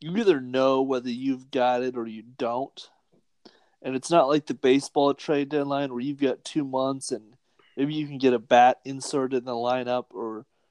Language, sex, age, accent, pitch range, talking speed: English, male, 30-49, American, 125-150 Hz, 195 wpm